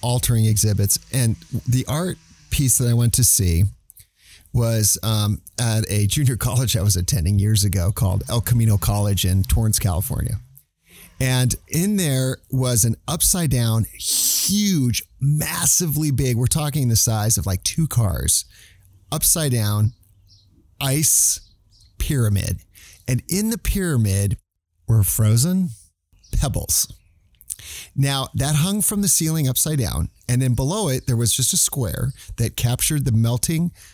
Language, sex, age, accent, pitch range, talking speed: English, male, 40-59, American, 100-135 Hz, 140 wpm